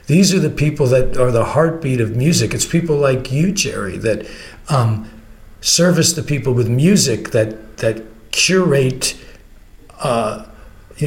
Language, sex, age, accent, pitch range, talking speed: English, male, 50-69, American, 115-155 Hz, 145 wpm